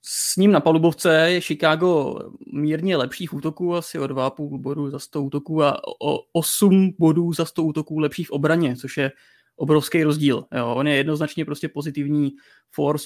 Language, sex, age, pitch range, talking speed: Czech, male, 20-39, 140-165 Hz, 170 wpm